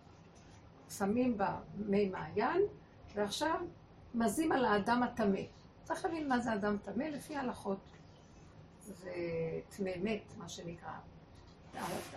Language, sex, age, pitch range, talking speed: Hebrew, female, 60-79, 195-260 Hz, 110 wpm